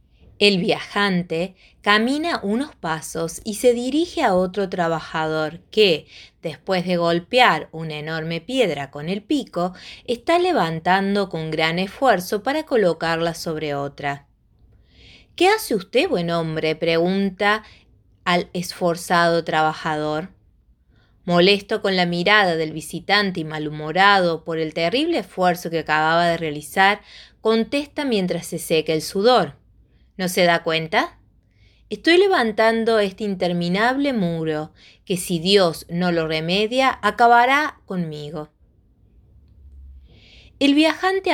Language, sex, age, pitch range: Spanish, female, 20-39, 160-220 Hz